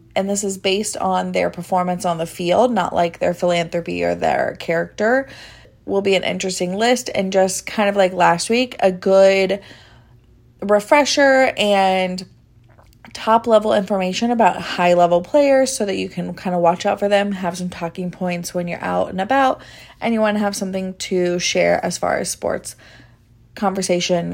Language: English